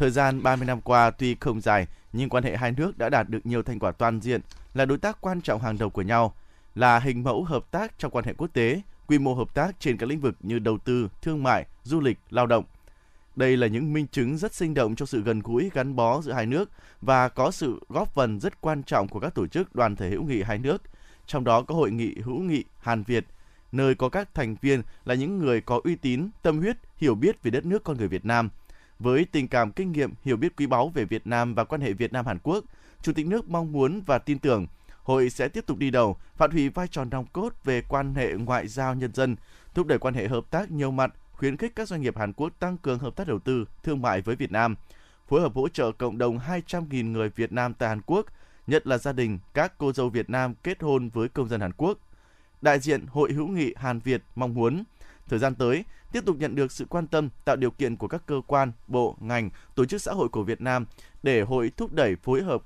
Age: 20-39